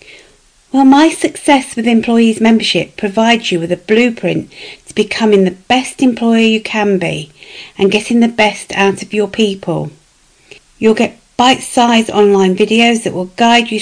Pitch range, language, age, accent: 185-230 Hz, English, 50-69, British